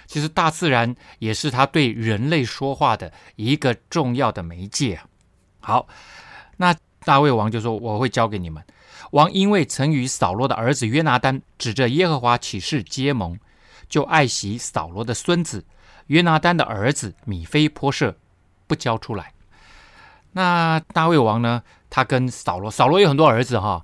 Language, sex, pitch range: Chinese, male, 110-150 Hz